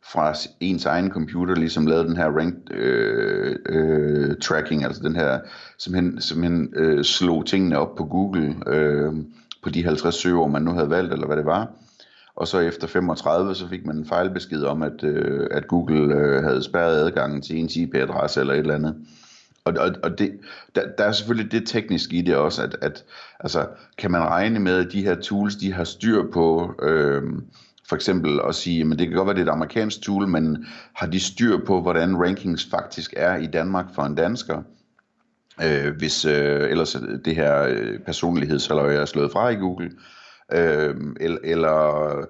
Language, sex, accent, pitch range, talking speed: Danish, male, native, 75-95 Hz, 190 wpm